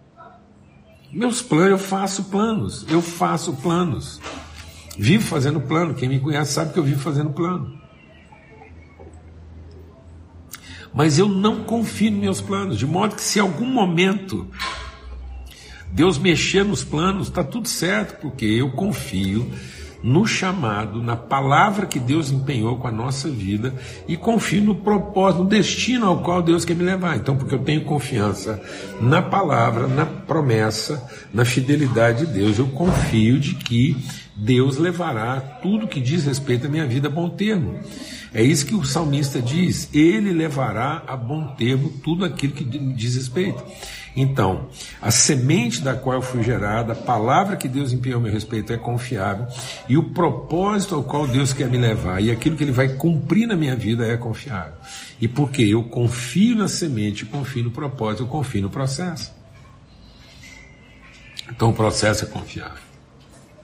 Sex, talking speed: male, 160 wpm